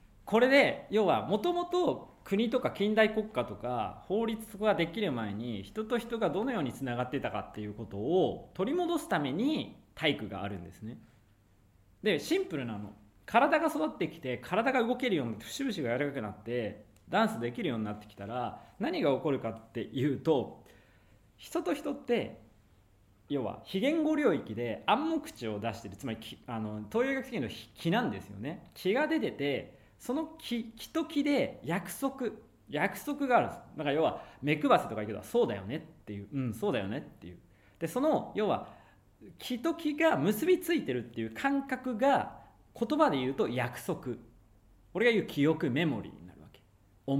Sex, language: male, Japanese